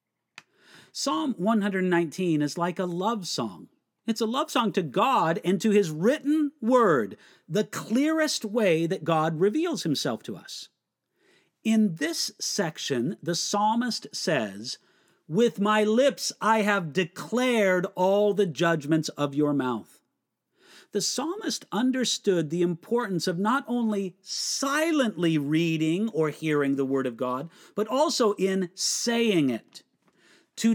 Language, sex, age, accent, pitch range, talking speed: English, male, 50-69, American, 170-235 Hz, 130 wpm